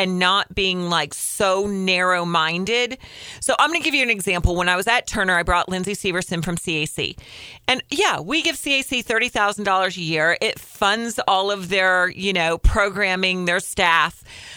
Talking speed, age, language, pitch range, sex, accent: 175 wpm, 40-59, English, 175-220 Hz, female, American